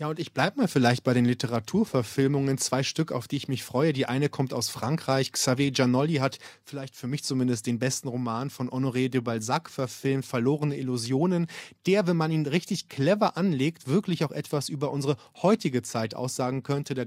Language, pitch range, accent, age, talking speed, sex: German, 130-155 Hz, German, 30-49, 195 wpm, male